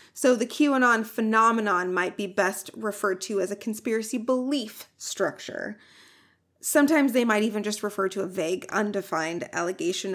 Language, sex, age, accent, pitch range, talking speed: English, female, 30-49, American, 195-255 Hz, 150 wpm